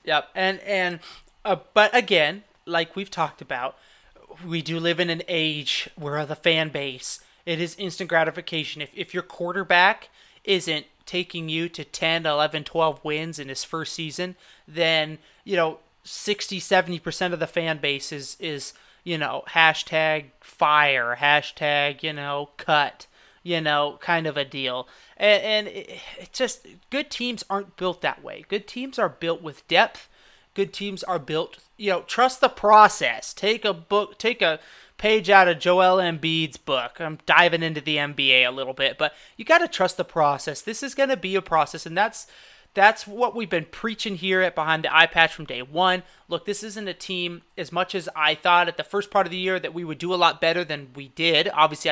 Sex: male